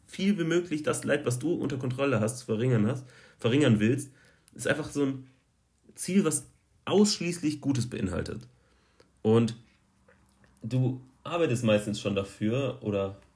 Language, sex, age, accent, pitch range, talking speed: German, male, 30-49, German, 110-135 Hz, 140 wpm